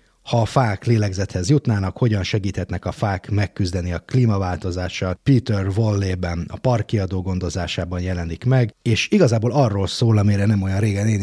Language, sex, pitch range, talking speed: Hungarian, male, 95-115 Hz, 150 wpm